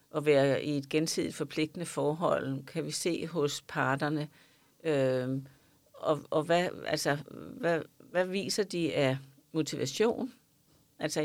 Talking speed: 130 wpm